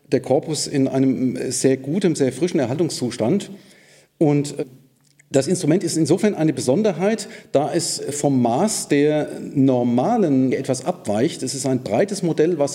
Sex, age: male, 40-59